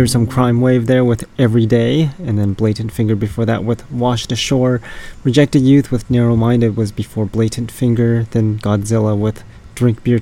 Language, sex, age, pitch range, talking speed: English, male, 20-39, 110-125 Hz, 180 wpm